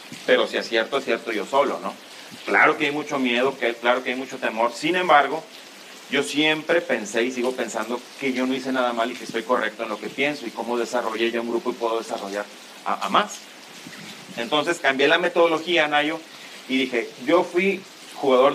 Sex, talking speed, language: male, 205 wpm, English